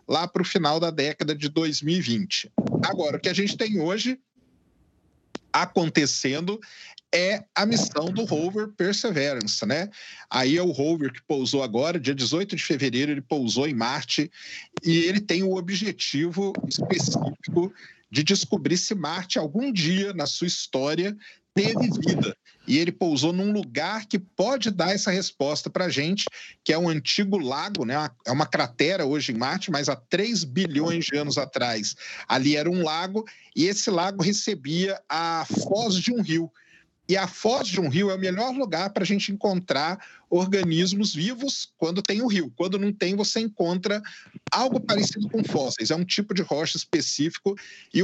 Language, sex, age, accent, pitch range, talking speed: Portuguese, male, 40-59, Brazilian, 155-200 Hz, 170 wpm